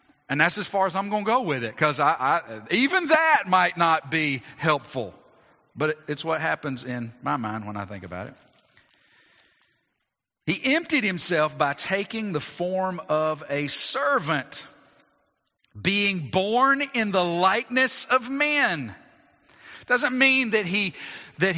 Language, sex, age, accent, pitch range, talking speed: English, male, 40-59, American, 140-230 Hz, 140 wpm